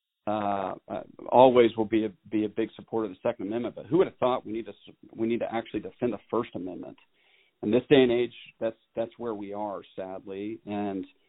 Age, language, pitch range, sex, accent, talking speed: 40-59, English, 105-125 Hz, male, American, 225 wpm